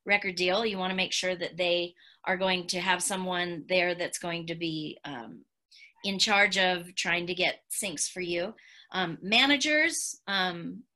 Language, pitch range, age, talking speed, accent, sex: English, 180-225 Hz, 30-49, 175 wpm, American, female